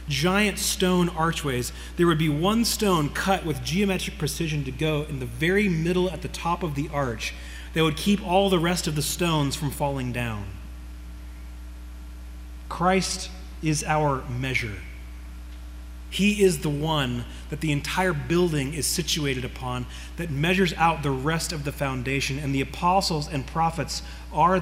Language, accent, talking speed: English, American, 160 wpm